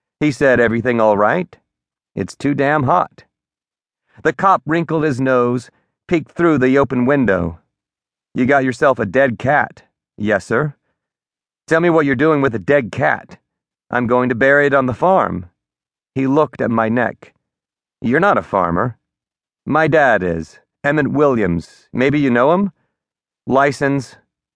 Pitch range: 105-145 Hz